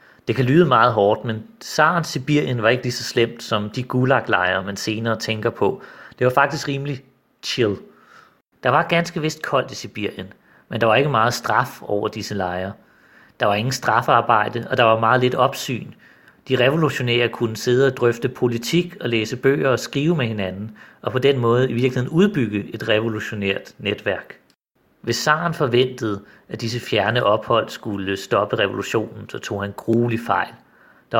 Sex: male